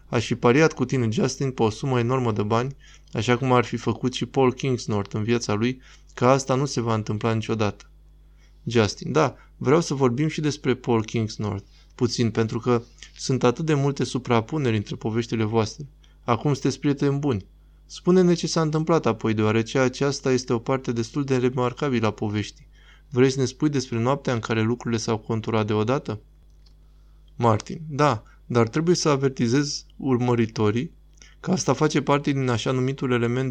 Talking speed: 170 wpm